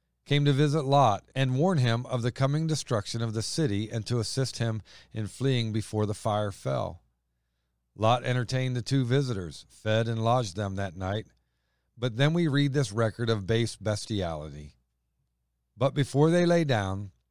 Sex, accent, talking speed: male, American, 170 wpm